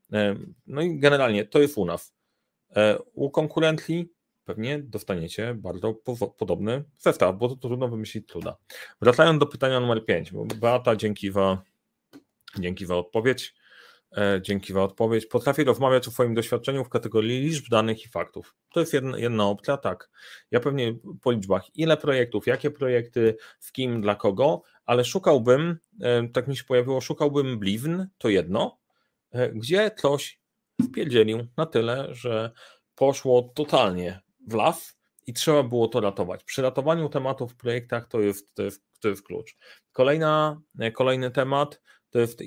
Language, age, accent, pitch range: Polish, 40-59, native, 105-140 Hz